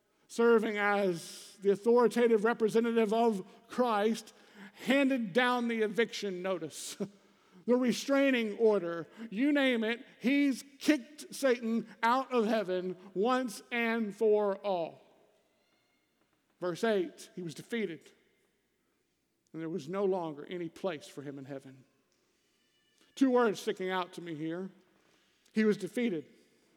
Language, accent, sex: English, American, male